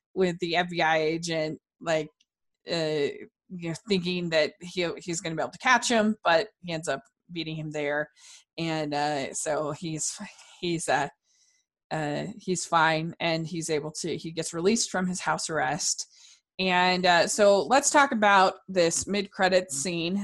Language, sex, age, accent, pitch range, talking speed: English, female, 20-39, American, 160-200 Hz, 165 wpm